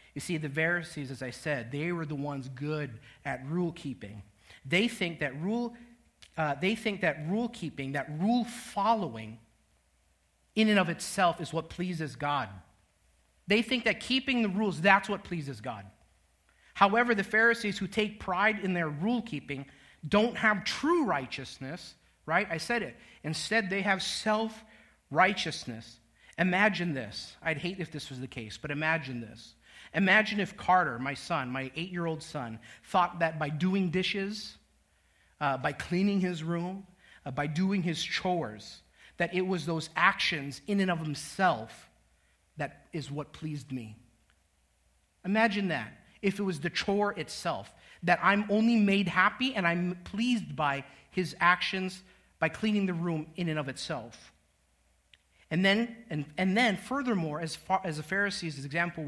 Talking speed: 155 wpm